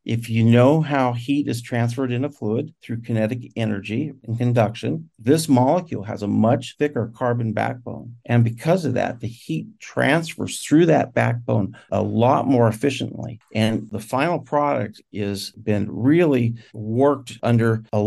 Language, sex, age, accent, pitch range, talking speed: English, male, 50-69, American, 105-125 Hz, 155 wpm